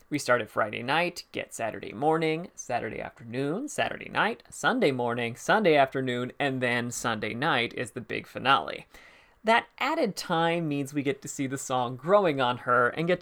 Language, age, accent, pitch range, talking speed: English, 30-49, American, 130-170 Hz, 175 wpm